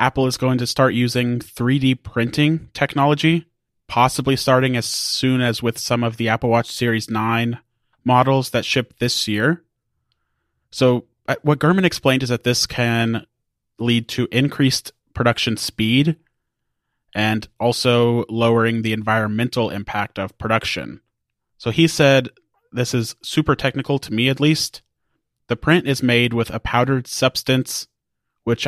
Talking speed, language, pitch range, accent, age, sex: 140 wpm, English, 115-135 Hz, American, 30-49, male